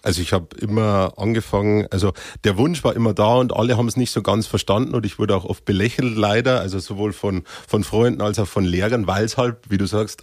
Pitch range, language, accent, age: 100-125 Hz, German, German, 30-49